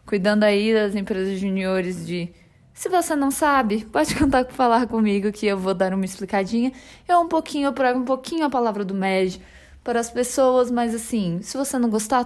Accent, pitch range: Brazilian, 205-265 Hz